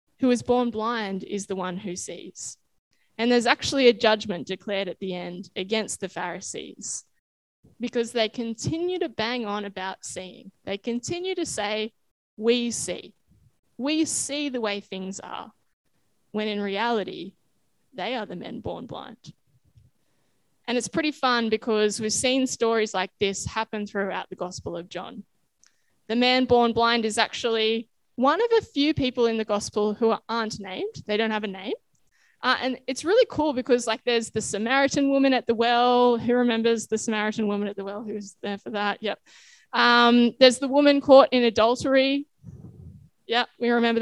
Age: 10-29